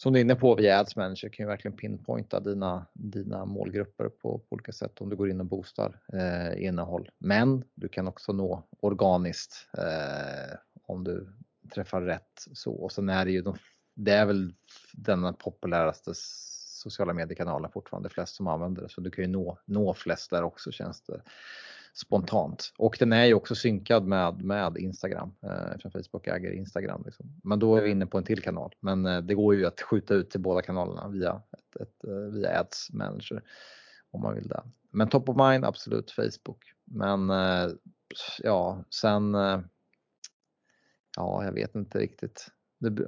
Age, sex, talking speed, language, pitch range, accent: 30-49, male, 180 wpm, Swedish, 95-110 Hz, Norwegian